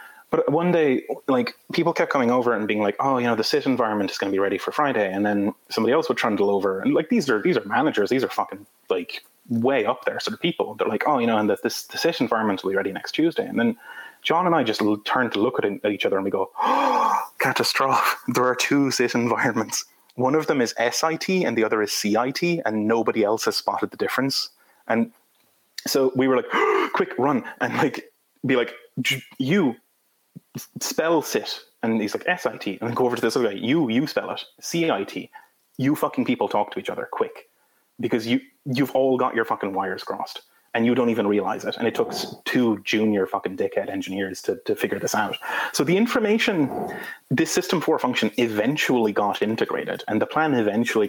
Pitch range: 105-175 Hz